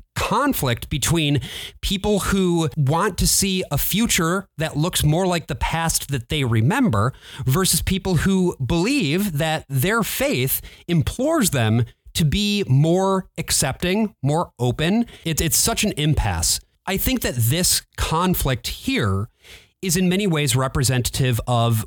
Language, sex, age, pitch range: English, male, 30-49, 125-180 Hz